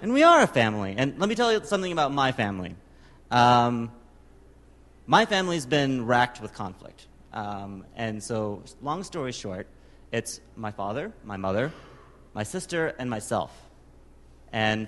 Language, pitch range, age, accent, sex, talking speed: English, 95-150 Hz, 30-49, American, male, 150 wpm